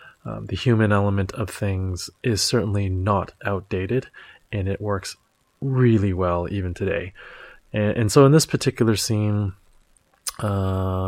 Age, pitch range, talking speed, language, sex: 20-39, 95-110 Hz, 135 wpm, English, male